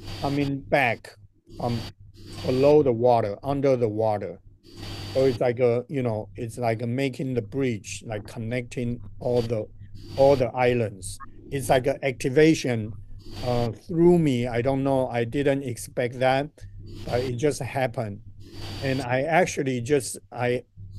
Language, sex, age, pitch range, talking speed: English, male, 50-69, 105-135 Hz, 150 wpm